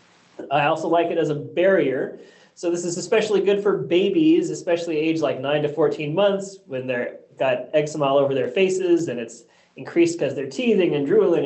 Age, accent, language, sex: 20-39, American, English, male